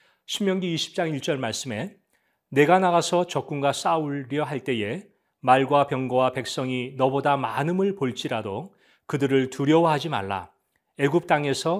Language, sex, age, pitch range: Korean, male, 40-59, 125-175 Hz